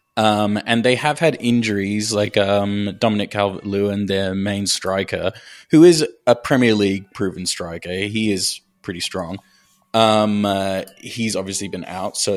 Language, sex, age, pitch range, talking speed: English, male, 20-39, 100-140 Hz, 145 wpm